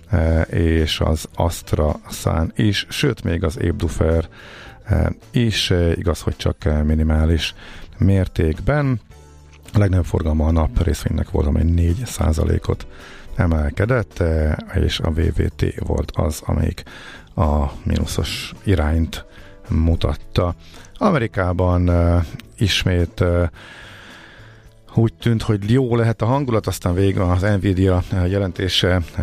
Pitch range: 85-105 Hz